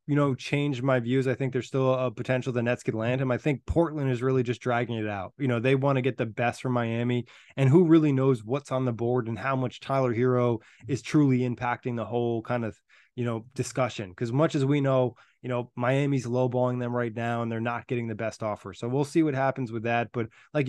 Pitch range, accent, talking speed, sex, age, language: 120-135 Hz, American, 250 wpm, male, 20-39, English